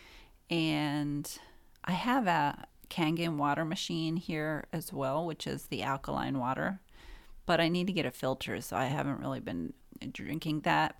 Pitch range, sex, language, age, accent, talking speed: 145-175 Hz, female, English, 40-59, American, 160 wpm